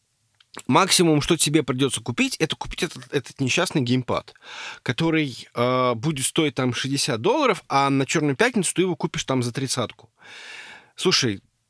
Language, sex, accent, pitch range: Russian, male, native, 125-185 Hz